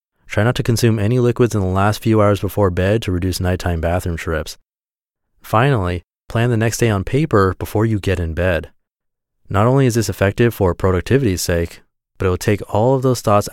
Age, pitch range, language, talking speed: 30-49, 90-115 Hz, English, 205 wpm